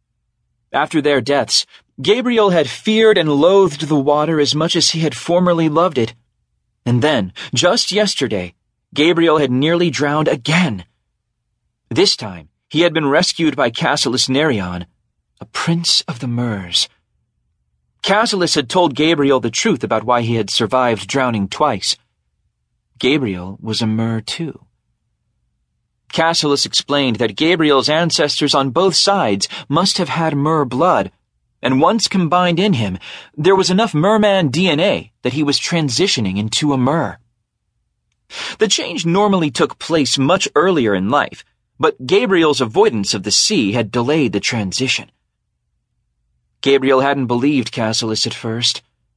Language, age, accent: English, 40-59, American